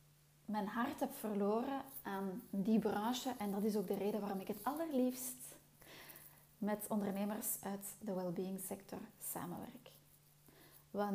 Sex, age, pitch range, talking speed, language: female, 30-49, 195-225 Hz, 135 wpm, Dutch